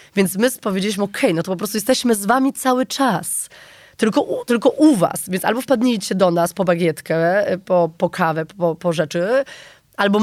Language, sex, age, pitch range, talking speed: Polish, female, 20-39, 175-225 Hz, 195 wpm